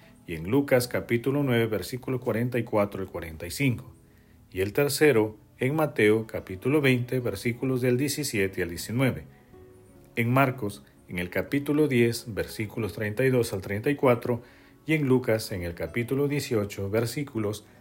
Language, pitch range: Spanish, 95-130 Hz